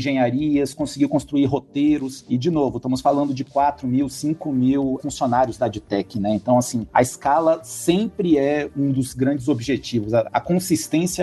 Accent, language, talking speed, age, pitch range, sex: Brazilian, Portuguese, 160 wpm, 50-69, 130-160 Hz, male